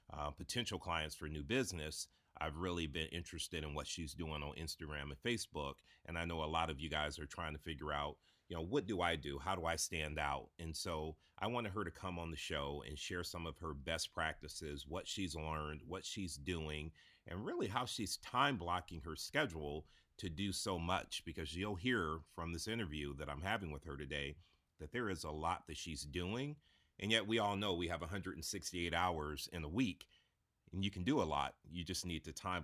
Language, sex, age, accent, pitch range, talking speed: English, male, 30-49, American, 80-95 Hz, 220 wpm